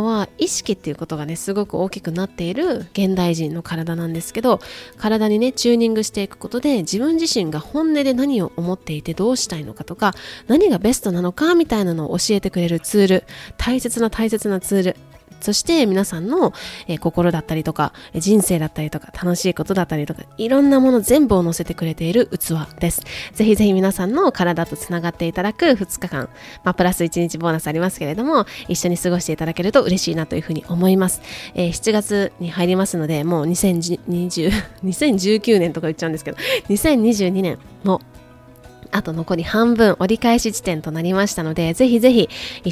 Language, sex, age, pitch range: Japanese, female, 20-39, 170-220 Hz